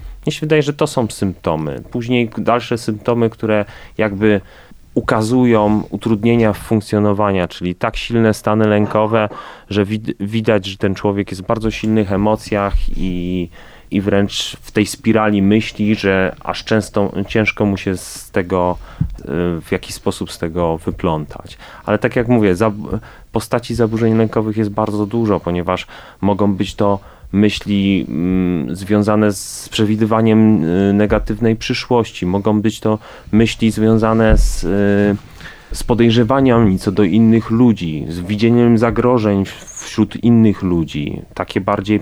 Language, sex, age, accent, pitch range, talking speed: Polish, male, 30-49, native, 95-115 Hz, 135 wpm